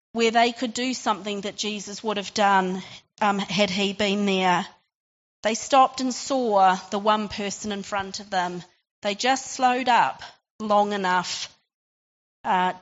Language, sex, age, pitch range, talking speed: English, female, 40-59, 200-250 Hz, 155 wpm